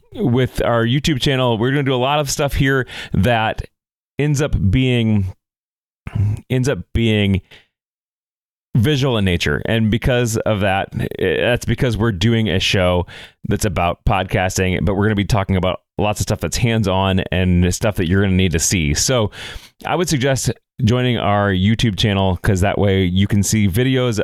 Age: 30-49